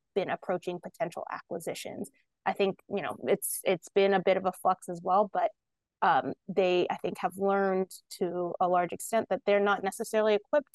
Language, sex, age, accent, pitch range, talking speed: English, female, 20-39, American, 175-205 Hz, 190 wpm